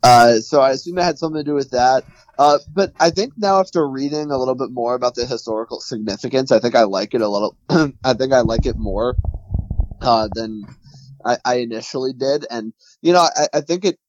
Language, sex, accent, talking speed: English, male, American, 220 wpm